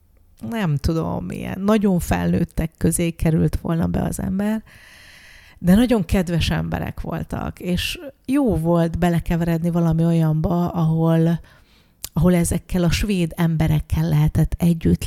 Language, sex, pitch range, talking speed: Hungarian, female, 155-175 Hz, 120 wpm